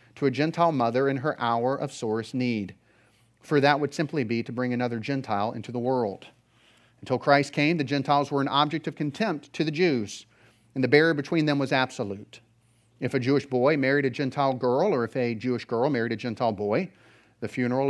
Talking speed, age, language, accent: 205 wpm, 40-59, English, American